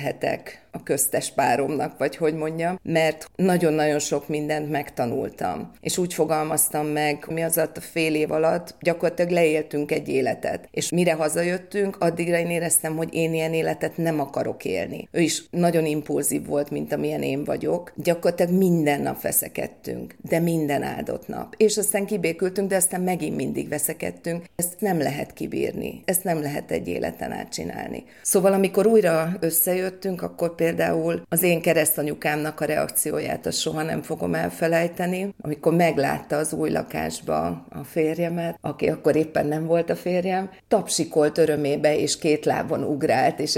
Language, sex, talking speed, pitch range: Hungarian, female, 155 wpm, 150-175 Hz